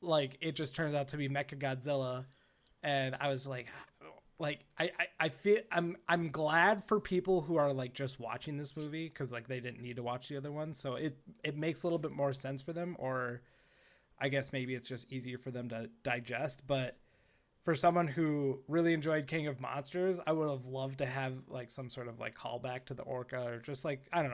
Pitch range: 125-155 Hz